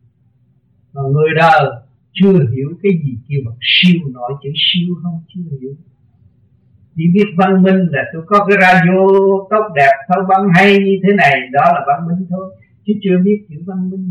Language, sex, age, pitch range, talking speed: Vietnamese, male, 60-79, 125-195 Hz, 185 wpm